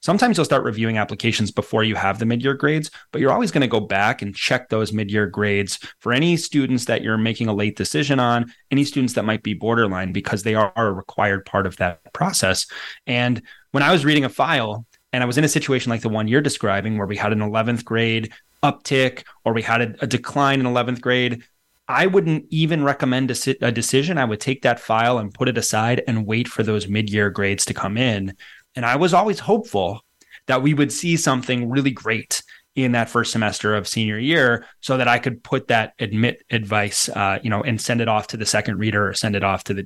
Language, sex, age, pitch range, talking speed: English, male, 30-49, 110-140 Hz, 225 wpm